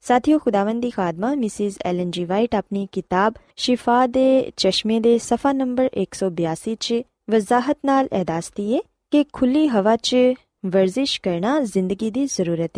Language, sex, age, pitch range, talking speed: Punjabi, female, 20-39, 185-250 Hz, 140 wpm